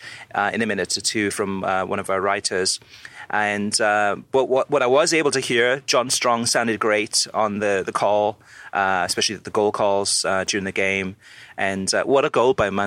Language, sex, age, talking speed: English, male, 30-49, 210 wpm